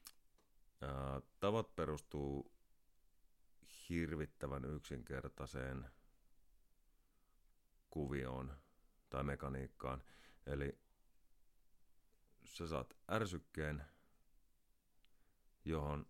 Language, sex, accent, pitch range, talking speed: Finnish, male, native, 65-75 Hz, 45 wpm